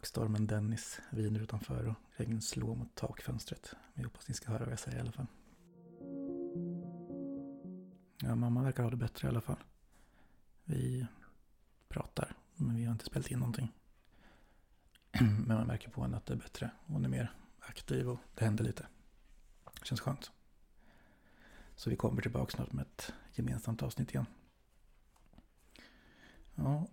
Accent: native